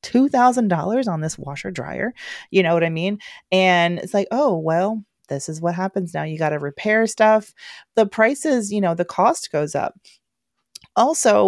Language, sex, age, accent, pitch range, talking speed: English, female, 30-49, American, 160-200 Hz, 175 wpm